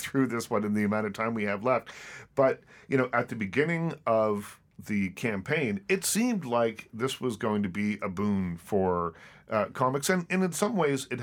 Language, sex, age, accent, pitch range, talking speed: English, male, 40-59, American, 105-130 Hz, 210 wpm